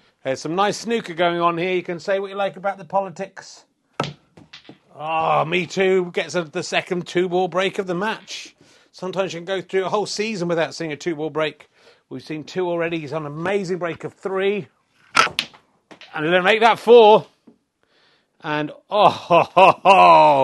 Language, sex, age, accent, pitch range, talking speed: English, male, 40-59, British, 150-195 Hz, 180 wpm